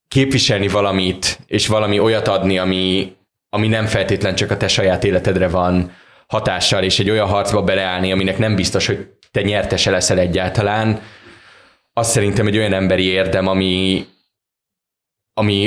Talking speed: 145 wpm